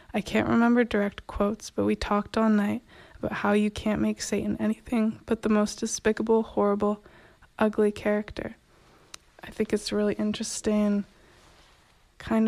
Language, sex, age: English, female, 20-39